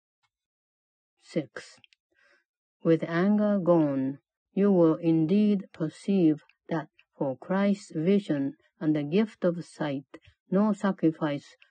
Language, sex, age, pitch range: Japanese, female, 60-79, 155-195 Hz